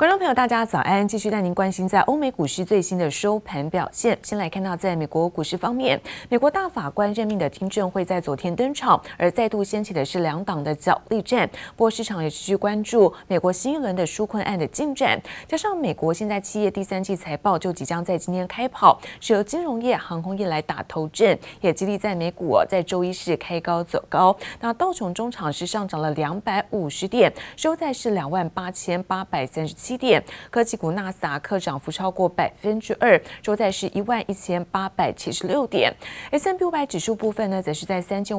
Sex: female